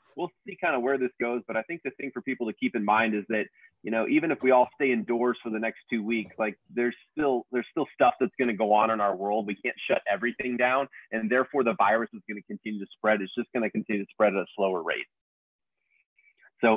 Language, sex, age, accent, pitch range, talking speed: English, male, 30-49, American, 105-120 Hz, 265 wpm